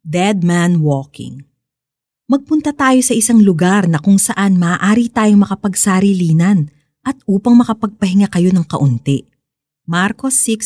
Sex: female